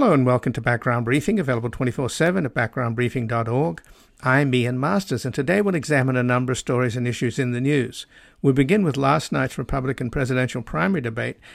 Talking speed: 180 wpm